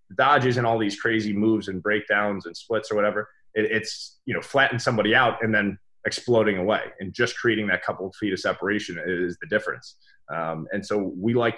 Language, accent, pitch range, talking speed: English, American, 95-115 Hz, 205 wpm